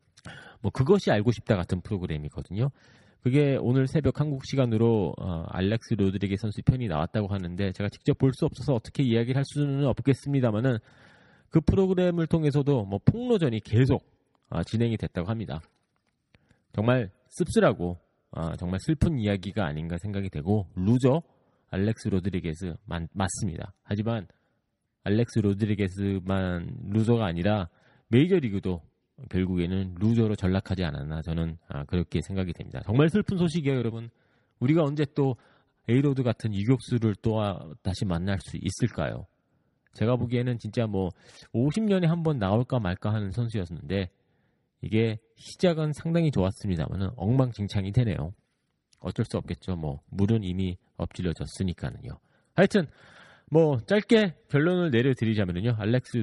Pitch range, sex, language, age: 95-130 Hz, male, Korean, 30-49